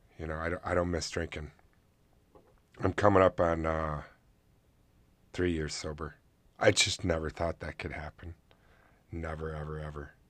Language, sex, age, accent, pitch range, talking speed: English, male, 30-49, American, 85-120 Hz, 150 wpm